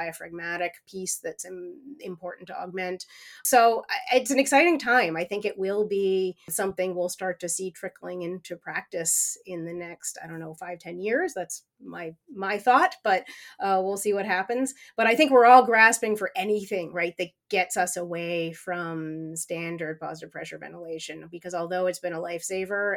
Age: 30-49